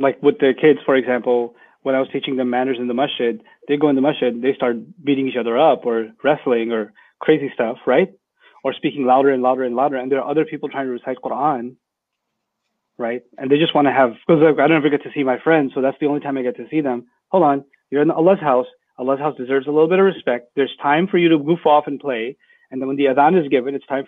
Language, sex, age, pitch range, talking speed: English, male, 30-49, 135-160 Hz, 265 wpm